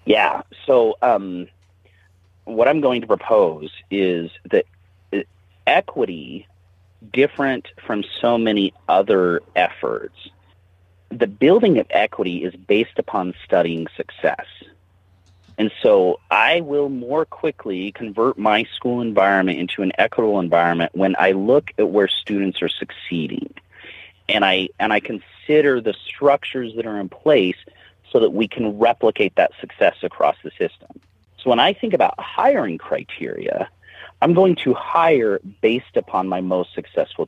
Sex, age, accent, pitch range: male, 30-49, American, 90-120 Hz